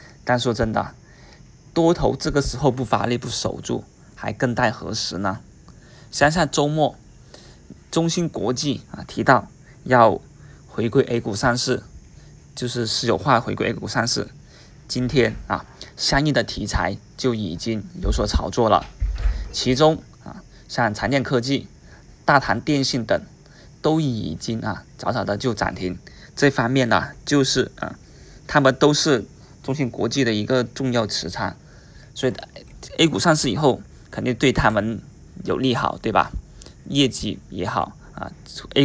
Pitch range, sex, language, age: 105-135 Hz, male, Chinese, 20-39